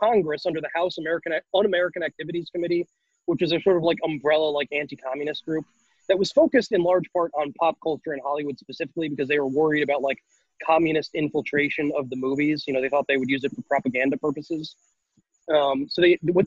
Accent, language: American, English